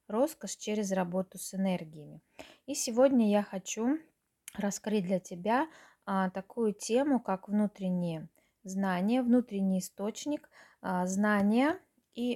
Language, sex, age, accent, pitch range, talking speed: Russian, female, 20-39, native, 190-235 Hz, 100 wpm